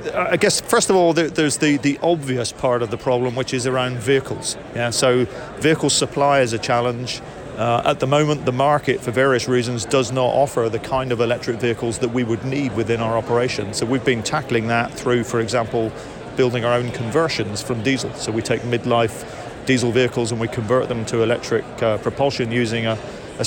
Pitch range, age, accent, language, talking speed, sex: 120-140 Hz, 40-59, British, English, 200 wpm, male